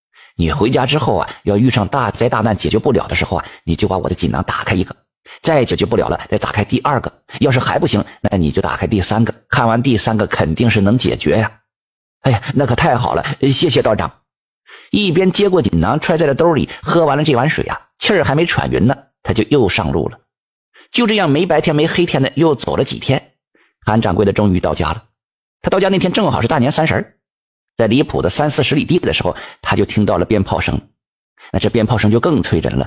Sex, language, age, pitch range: male, Chinese, 50-69, 105-140 Hz